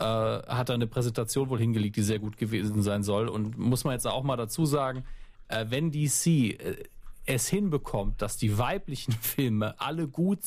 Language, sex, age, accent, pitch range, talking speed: German, male, 40-59, German, 110-145 Hz, 170 wpm